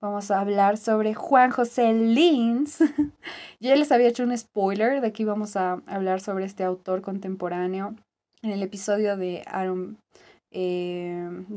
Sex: female